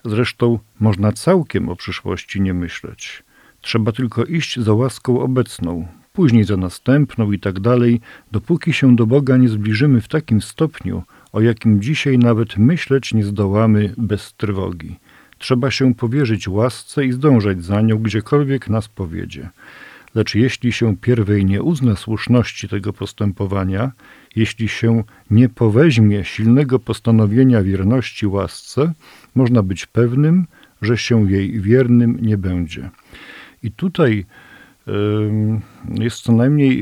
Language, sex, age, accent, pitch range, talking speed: Polish, male, 50-69, native, 105-125 Hz, 130 wpm